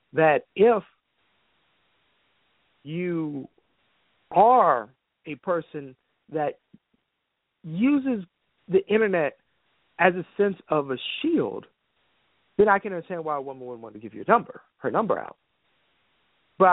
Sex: male